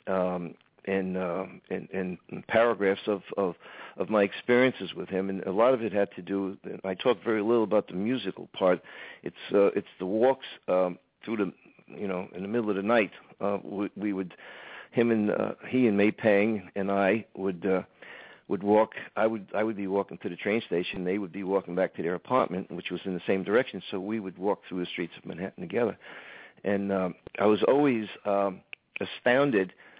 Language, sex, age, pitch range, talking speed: English, male, 50-69, 95-115 Hz, 210 wpm